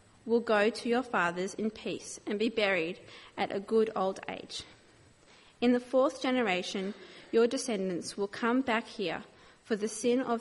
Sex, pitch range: female, 195-235 Hz